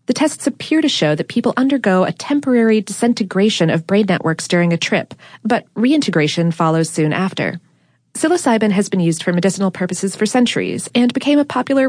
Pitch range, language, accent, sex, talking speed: 170-225 Hz, English, American, female, 175 wpm